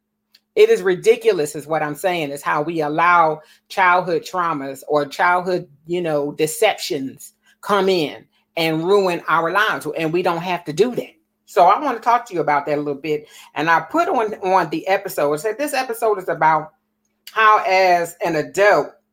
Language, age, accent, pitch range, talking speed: English, 40-59, American, 170-245 Hz, 190 wpm